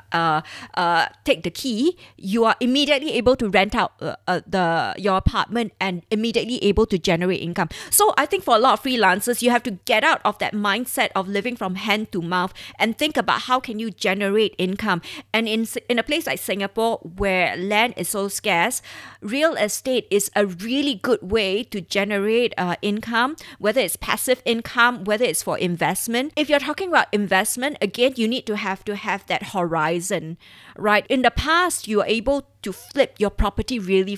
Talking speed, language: 195 wpm, English